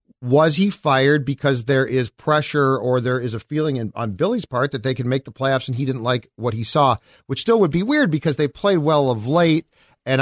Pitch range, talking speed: 125-160 Hz, 235 wpm